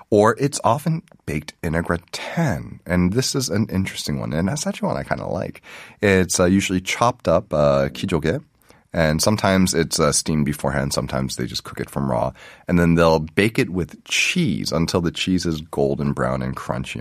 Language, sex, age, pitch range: Korean, male, 30-49, 75-105 Hz